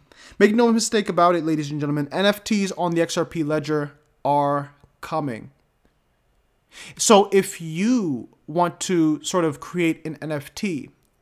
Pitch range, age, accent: 145-185 Hz, 20-39, American